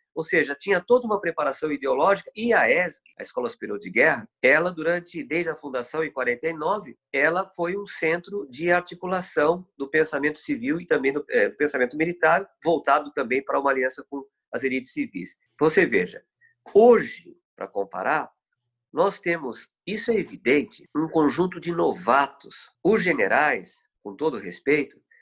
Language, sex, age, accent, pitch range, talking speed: Portuguese, male, 50-69, Brazilian, 150-215 Hz, 160 wpm